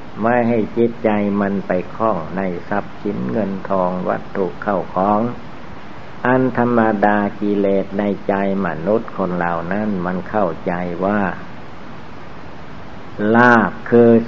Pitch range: 90-110 Hz